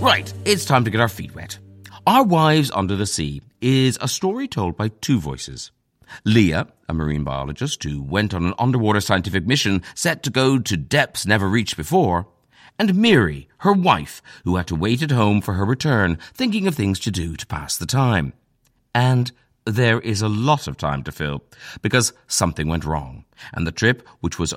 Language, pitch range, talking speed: English, 85-125 Hz, 195 wpm